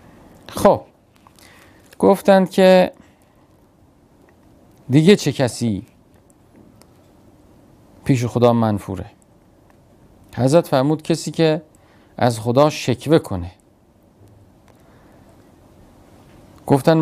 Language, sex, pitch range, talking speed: Persian, male, 105-145 Hz, 65 wpm